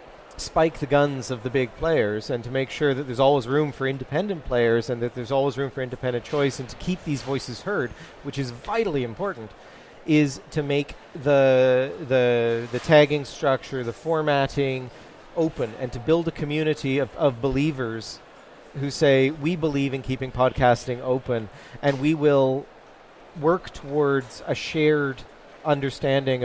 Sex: male